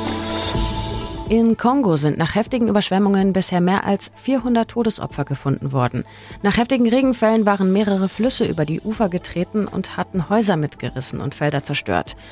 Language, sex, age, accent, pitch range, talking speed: German, female, 30-49, German, 145-215 Hz, 145 wpm